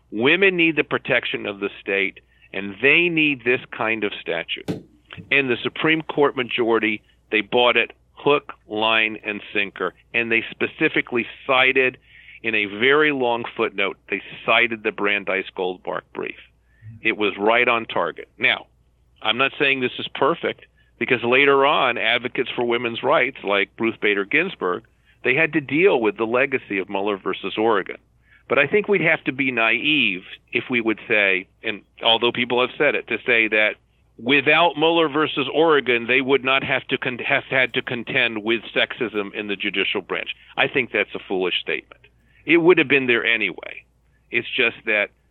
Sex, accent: male, American